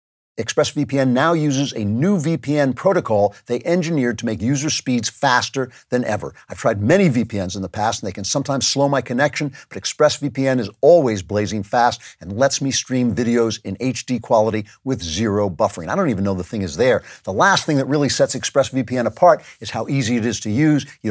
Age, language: 50-69, English